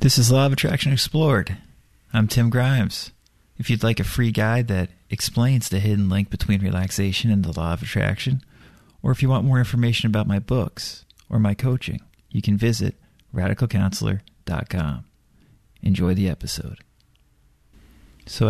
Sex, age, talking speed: male, 40-59, 150 wpm